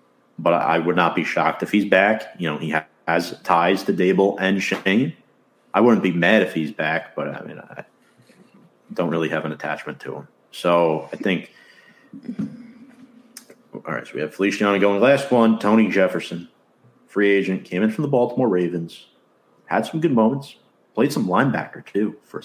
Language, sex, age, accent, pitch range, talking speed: English, male, 40-59, American, 85-110 Hz, 180 wpm